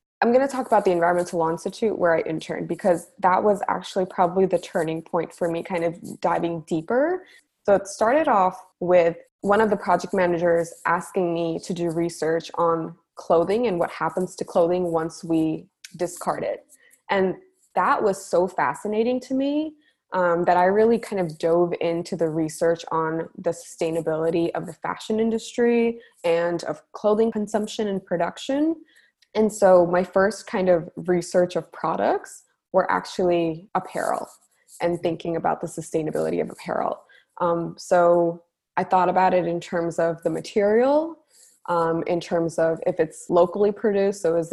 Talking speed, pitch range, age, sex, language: 165 wpm, 170-205 Hz, 20-39, female, English